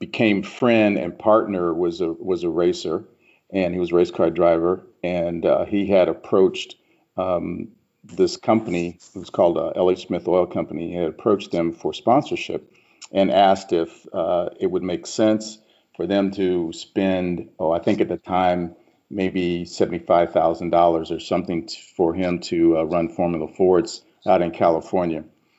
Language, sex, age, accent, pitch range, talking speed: English, male, 50-69, American, 85-100 Hz, 170 wpm